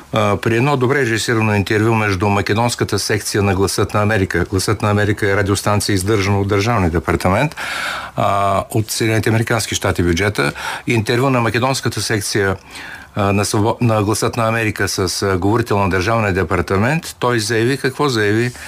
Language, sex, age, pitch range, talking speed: Bulgarian, male, 50-69, 100-120 Hz, 150 wpm